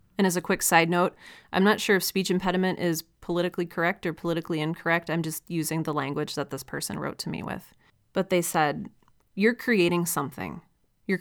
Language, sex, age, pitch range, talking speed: English, female, 30-49, 160-190 Hz, 200 wpm